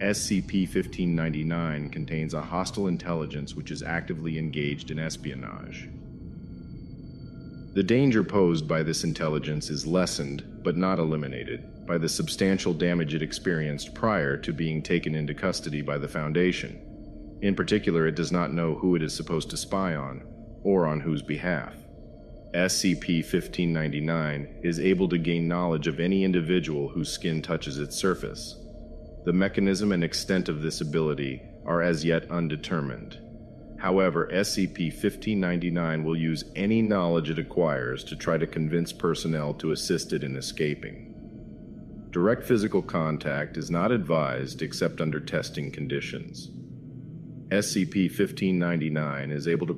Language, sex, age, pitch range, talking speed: English, male, 40-59, 75-90 Hz, 135 wpm